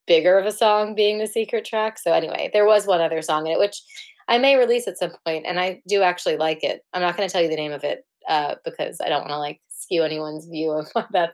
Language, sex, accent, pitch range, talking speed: English, female, American, 155-210 Hz, 275 wpm